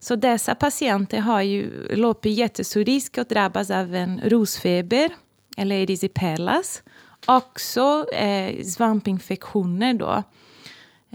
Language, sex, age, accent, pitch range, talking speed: Swedish, female, 30-49, native, 180-220 Hz, 115 wpm